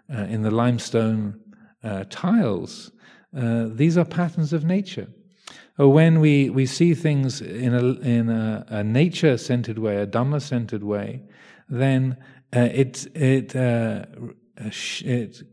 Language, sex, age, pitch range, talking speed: English, male, 40-59, 115-155 Hz, 110 wpm